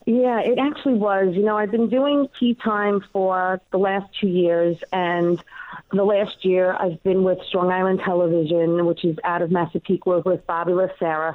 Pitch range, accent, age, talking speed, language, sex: 180-230 Hz, American, 40-59, 180 wpm, English, female